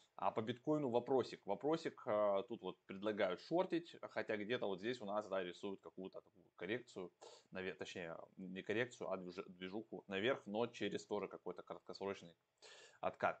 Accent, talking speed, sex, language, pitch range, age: native, 135 wpm, male, Russian, 95-120 Hz, 20-39